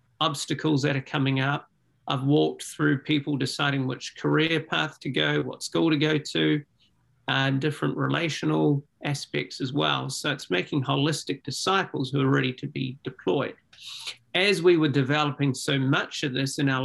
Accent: Australian